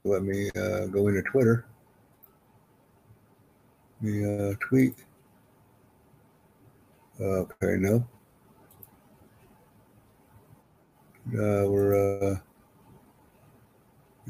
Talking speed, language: 65 wpm, English